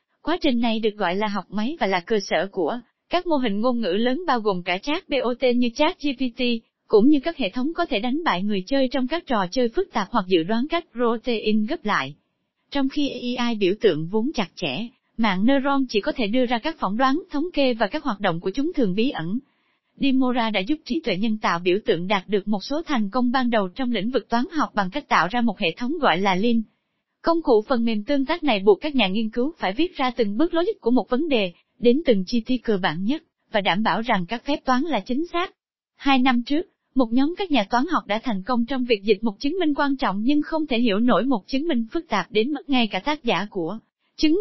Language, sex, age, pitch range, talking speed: Vietnamese, female, 20-39, 220-290 Hz, 255 wpm